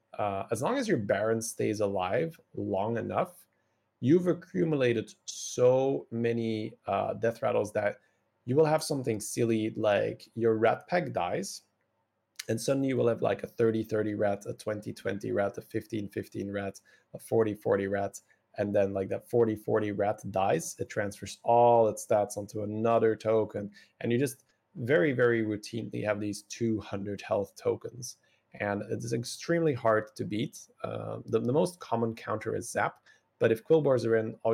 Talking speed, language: 160 wpm, English